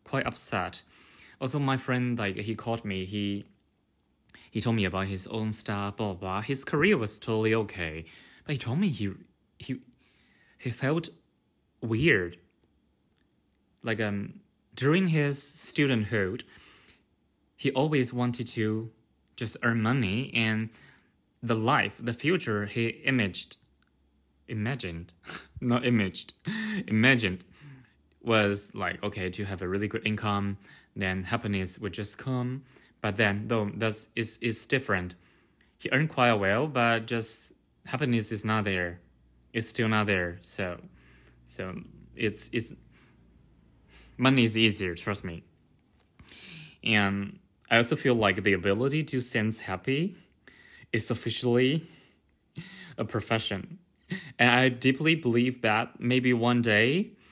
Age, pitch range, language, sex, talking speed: 20-39, 100-125 Hz, English, male, 130 wpm